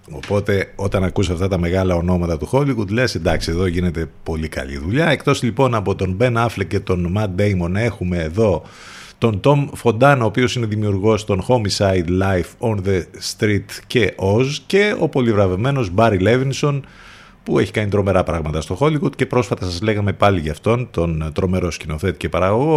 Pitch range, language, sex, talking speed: 90-120 Hz, Greek, male, 175 wpm